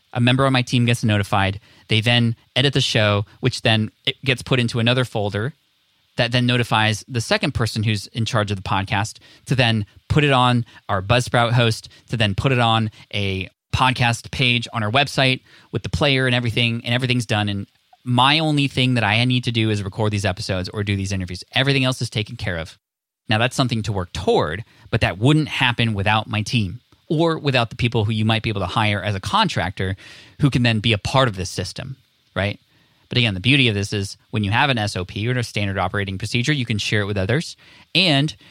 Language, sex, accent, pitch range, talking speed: English, male, American, 105-130 Hz, 225 wpm